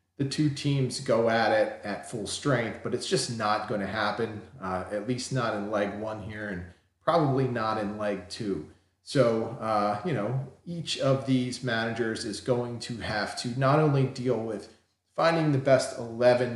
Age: 40-59